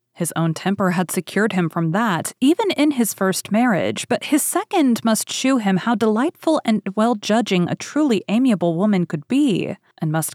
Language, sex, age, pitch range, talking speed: English, female, 30-49, 175-240 Hz, 180 wpm